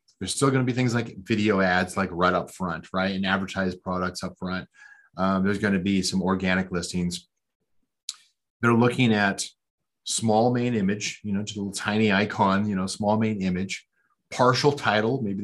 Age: 30-49